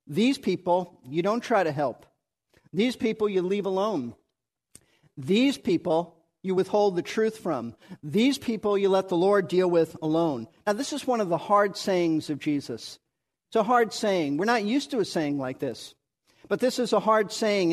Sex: male